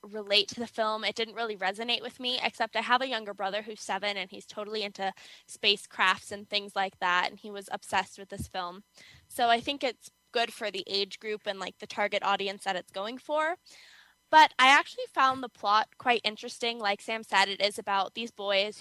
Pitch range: 205-235 Hz